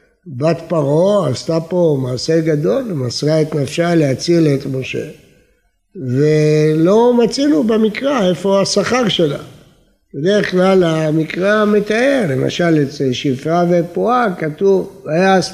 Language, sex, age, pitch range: Hebrew, male, 60-79, 150-205 Hz